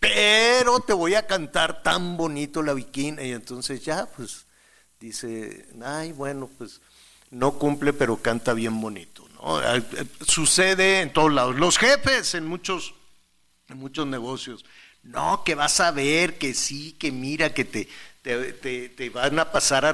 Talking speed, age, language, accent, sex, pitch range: 160 wpm, 50-69, Spanish, Mexican, male, 130-175 Hz